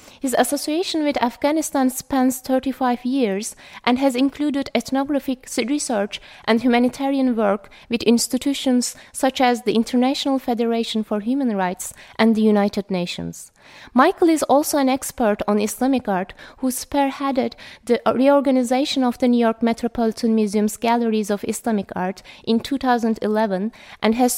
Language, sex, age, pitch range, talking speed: English, female, 20-39, 220-265 Hz, 135 wpm